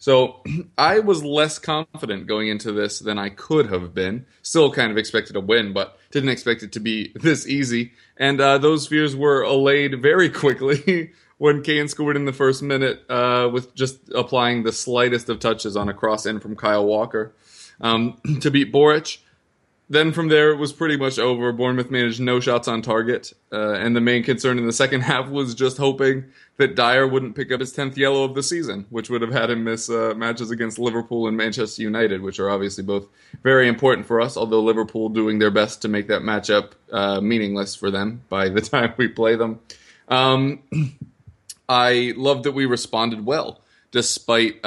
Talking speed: 195 wpm